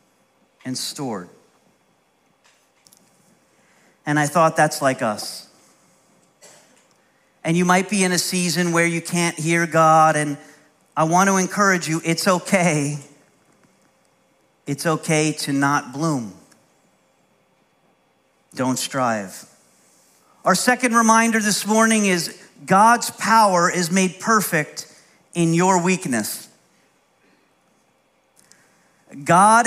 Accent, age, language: American, 40-59, English